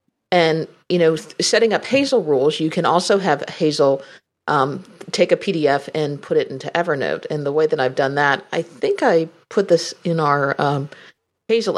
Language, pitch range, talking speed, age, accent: English, 145-180 Hz, 190 wpm, 40-59, American